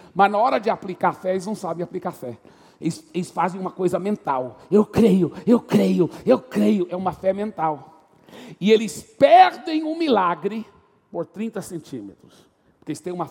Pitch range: 160-210 Hz